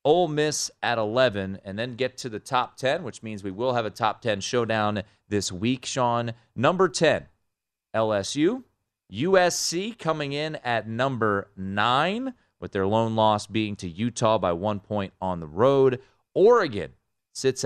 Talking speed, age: 160 wpm, 30-49